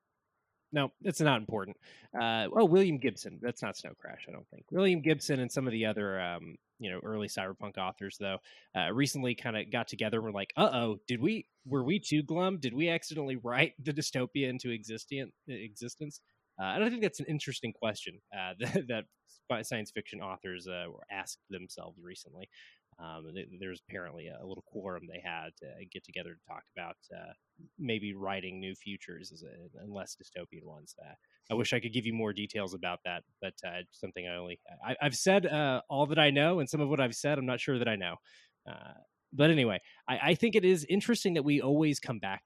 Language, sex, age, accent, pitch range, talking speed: English, male, 20-39, American, 100-145 Hz, 210 wpm